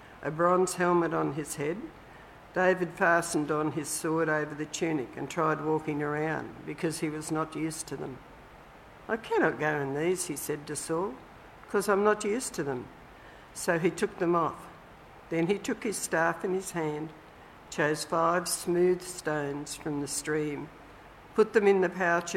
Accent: Australian